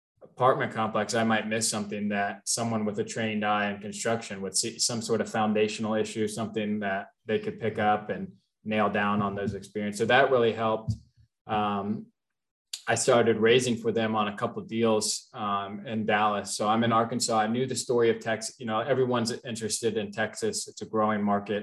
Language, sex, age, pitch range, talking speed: English, male, 20-39, 105-115 Hz, 195 wpm